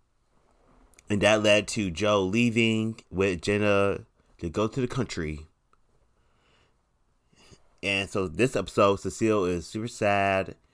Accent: American